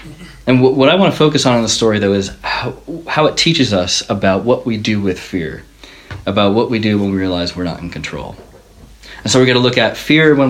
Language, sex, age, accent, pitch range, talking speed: English, male, 30-49, American, 95-130 Hz, 245 wpm